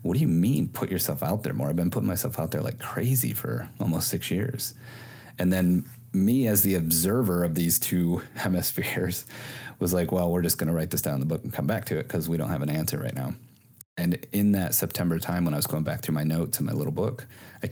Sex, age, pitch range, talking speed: male, 30-49, 80-105 Hz, 255 wpm